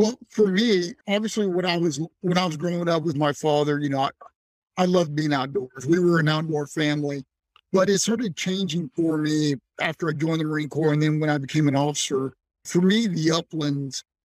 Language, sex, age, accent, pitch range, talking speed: English, male, 50-69, American, 150-185 Hz, 210 wpm